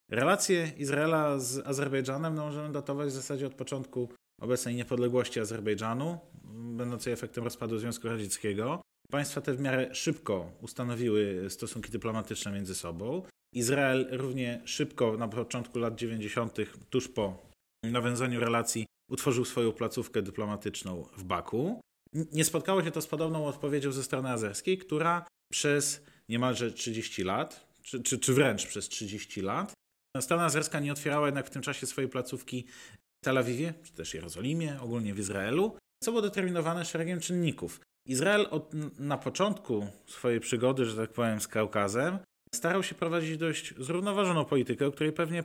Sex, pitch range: male, 120-160 Hz